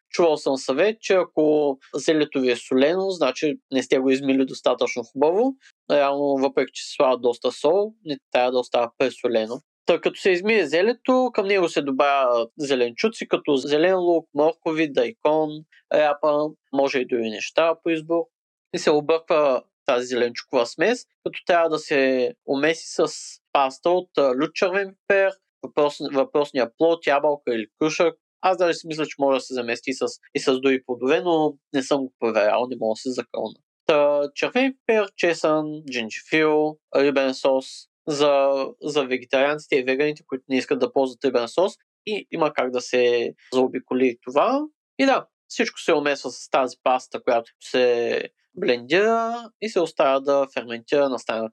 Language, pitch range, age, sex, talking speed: Bulgarian, 130-165 Hz, 30-49, male, 165 wpm